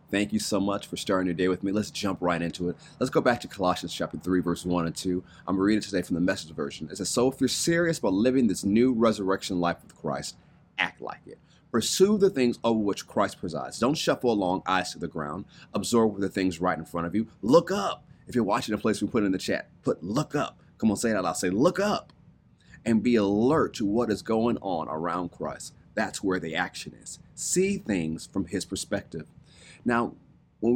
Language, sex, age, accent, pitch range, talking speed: English, male, 30-49, American, 90-115 Hz, 230 wpm